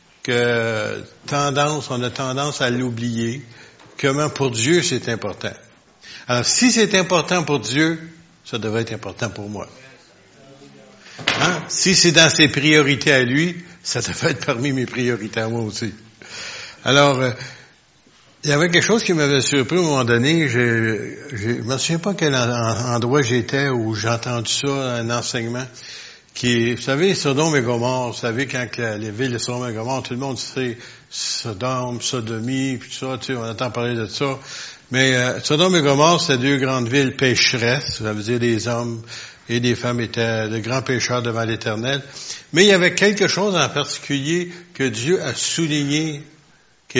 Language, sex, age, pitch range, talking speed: French, male, 60-79, 115-145 Hz, 175 wpm